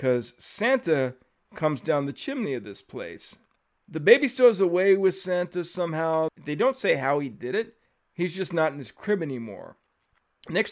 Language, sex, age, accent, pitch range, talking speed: English, male, 50-69, American, 145-215 Hz, 175 wpm